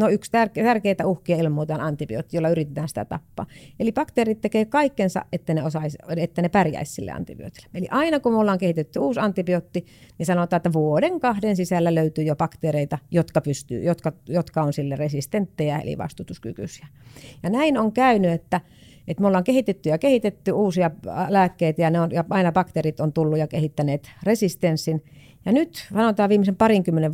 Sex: female